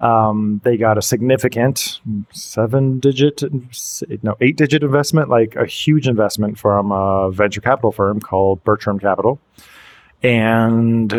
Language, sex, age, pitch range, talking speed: English, male, 30-49, 105-130 Hz, 130 wpm